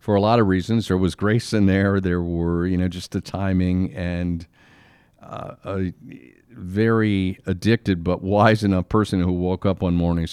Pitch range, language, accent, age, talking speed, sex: 90-105 Hz, English, American, 50-69, 185 wpm, male